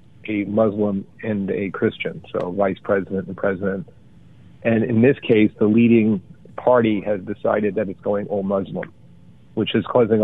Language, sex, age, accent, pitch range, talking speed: English, male, 50-69, American, 100-115 Hz, 160 wpm